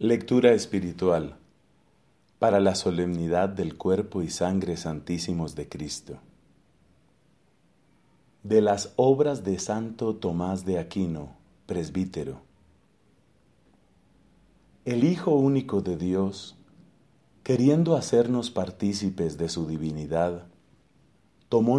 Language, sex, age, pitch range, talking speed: English, male, 40-59, 90-120 Hz, 90 wpm